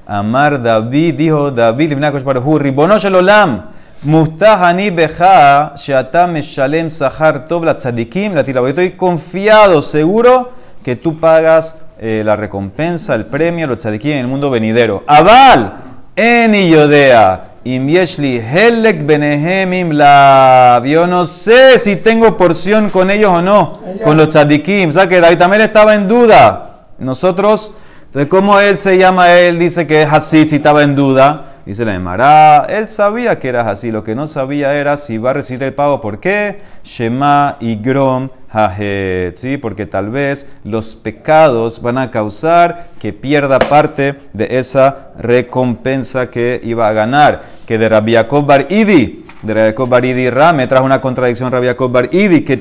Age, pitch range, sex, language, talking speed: 30-49, 125-175 Hz, male, Spanish, 140 wpm